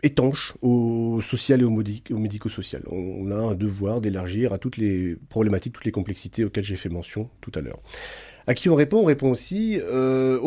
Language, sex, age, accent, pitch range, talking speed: French, male, 30-49, French, 105-125 Hz, 190 wpm